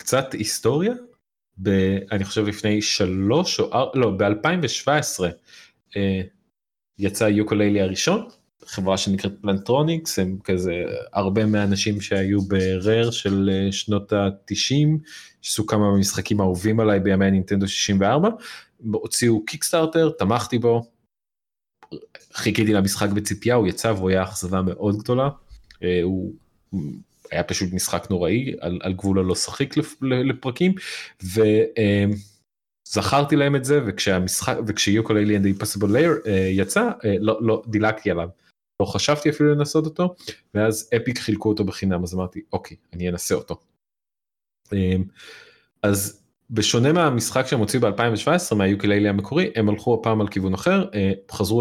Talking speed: 125 wpm